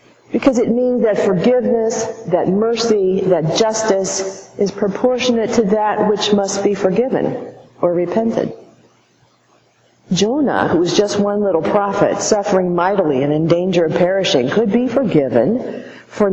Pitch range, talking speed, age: 165-225 Hz, 135 wpm, 50-69